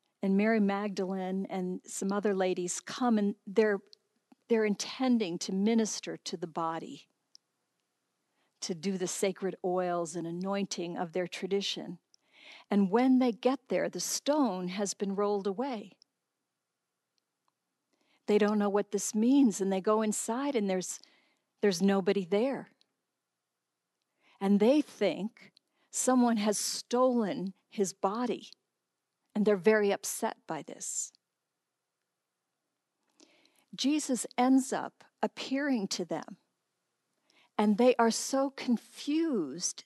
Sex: female